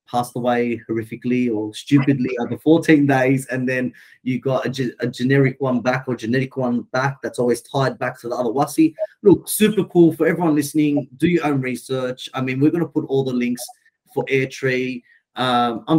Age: 30-49